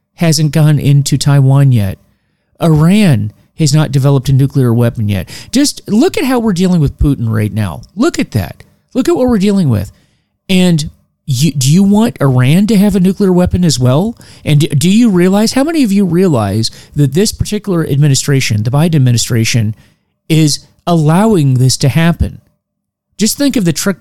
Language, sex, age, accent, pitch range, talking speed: English, male, 40-59, American, 125-180 Hz, 175 wpm